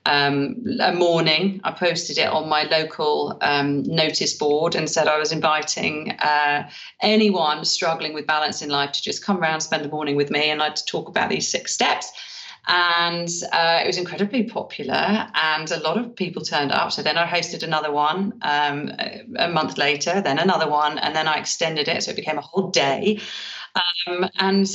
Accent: British